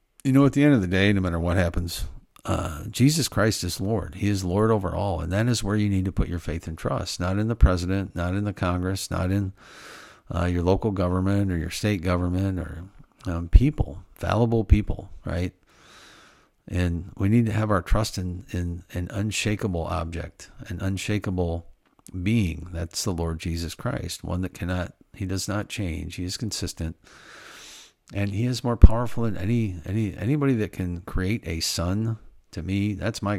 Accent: American